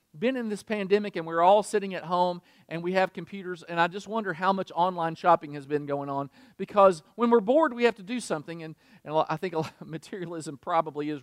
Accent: American